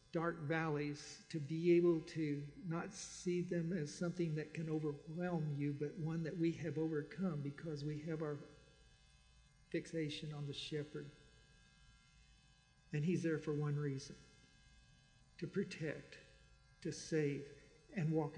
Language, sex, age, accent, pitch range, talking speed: English, male, 50-69, American, 150-190 Hz, 135 wpm